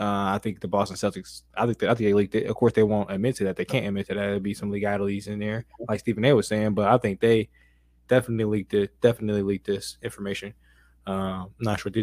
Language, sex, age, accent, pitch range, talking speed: English, male, 20-39, American, 100-115 Hz, 270 wpm